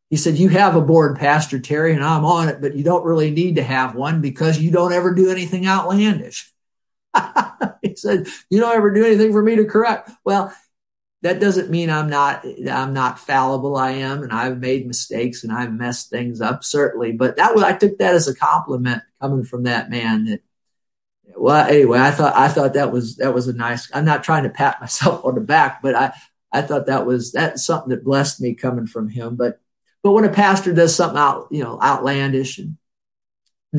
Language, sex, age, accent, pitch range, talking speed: English, male, 50-69, American, 130-160 Hz, 215 wpm